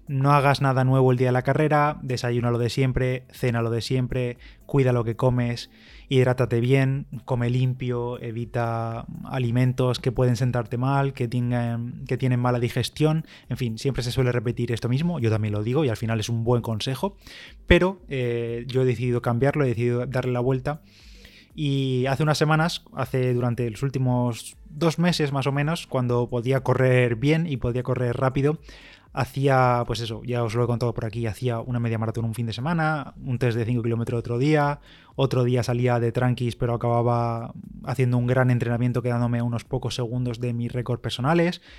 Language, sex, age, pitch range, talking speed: Spanish, male, 20-39, 120-135 Hz, 190 wpm